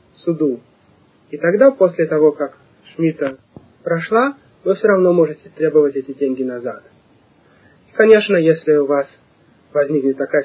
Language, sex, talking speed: Russian, male, 130 wpm